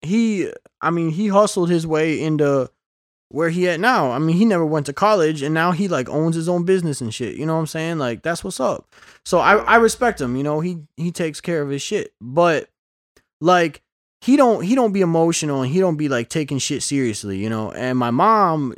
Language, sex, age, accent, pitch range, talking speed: English, male, 20-39, American, 125-180 Hz, 235 wpm